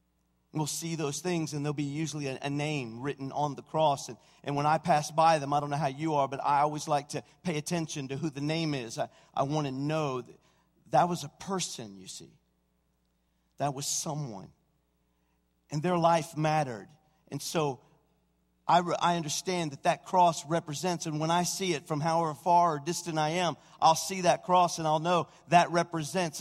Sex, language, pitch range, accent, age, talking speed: male, English, 130-165 Hz, American, 50-69, 200 wpm